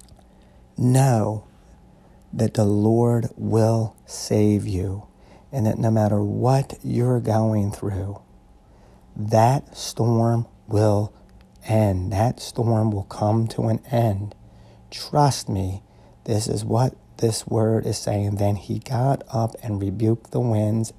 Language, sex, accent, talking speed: English, male, American, 125 wpm